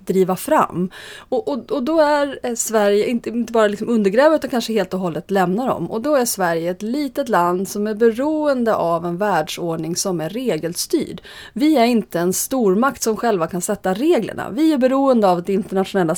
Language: Swedish